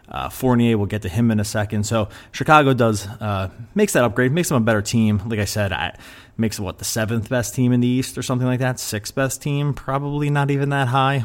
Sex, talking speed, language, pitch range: male, 245 wpm, English, 105-125 Hz